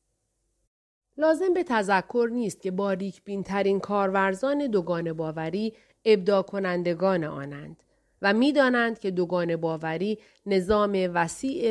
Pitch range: 175-225 Hz